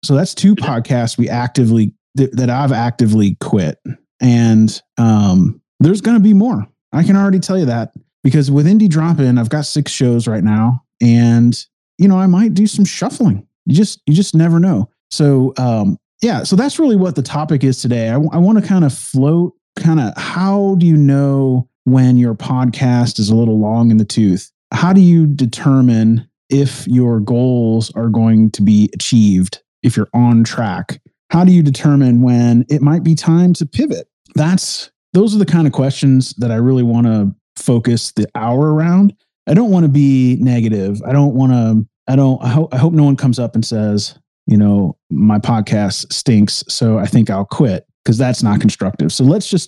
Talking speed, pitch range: 200 wpm, 115-165 Hz